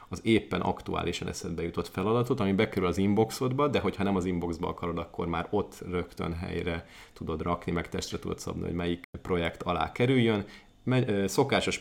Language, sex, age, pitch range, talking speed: Hungarian, male, 30-49, 85-100 Hz, 175 wpm